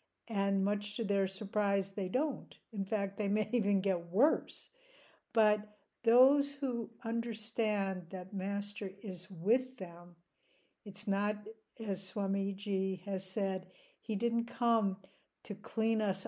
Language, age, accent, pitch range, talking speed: English, 60-79, American, 185-215 Hz, 125 wpm